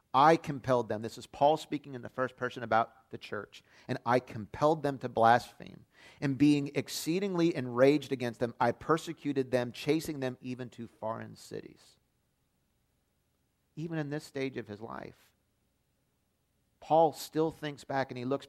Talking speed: 160 wpm